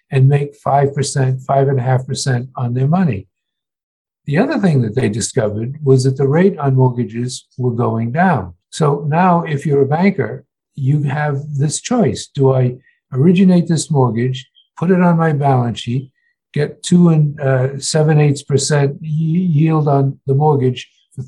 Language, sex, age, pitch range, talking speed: English, male, 60-79, 130-155 Hz, 160 wpm